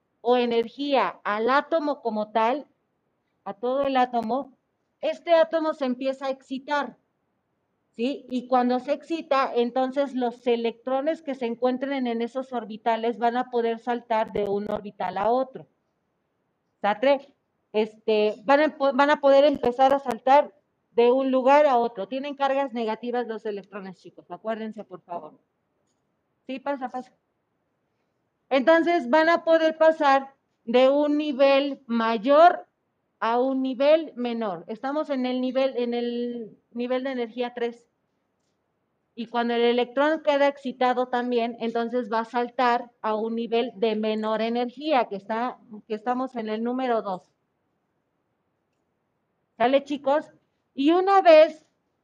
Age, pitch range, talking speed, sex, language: 40-59, 230-275 Hz, 130 wpm, female, Spanish